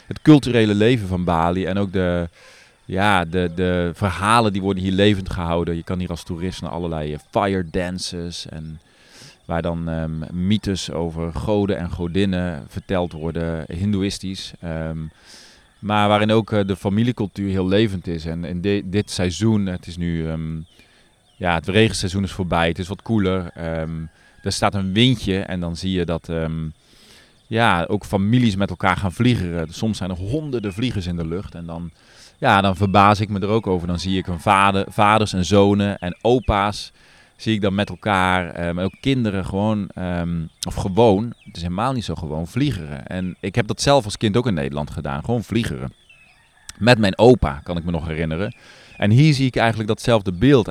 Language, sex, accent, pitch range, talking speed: Dutch, male, Dutch, 85-105 Hz, 190 wpm